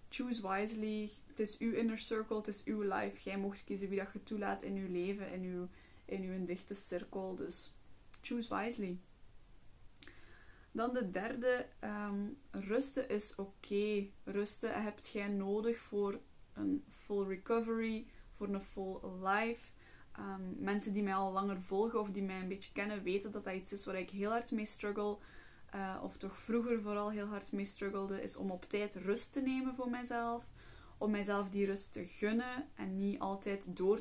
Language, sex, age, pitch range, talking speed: Dutch, female, 10-29, 195-225 Hz, 180 wpm